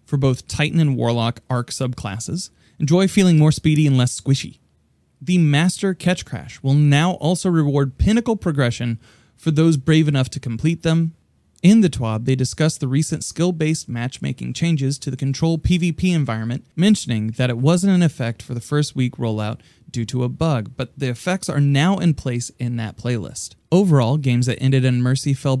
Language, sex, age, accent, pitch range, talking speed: English, male, 30-49, American, 125-160 Hz, 185 wpm